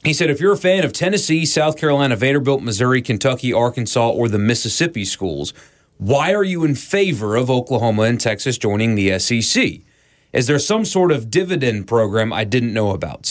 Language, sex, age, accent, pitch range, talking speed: English, male, 30-49, American, 115-155 Hz, 185 wpm